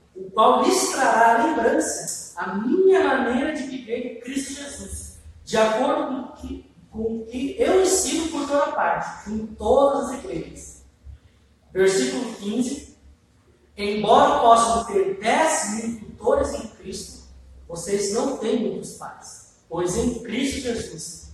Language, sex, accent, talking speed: Portuguese, male, Brazilian, 125 wpm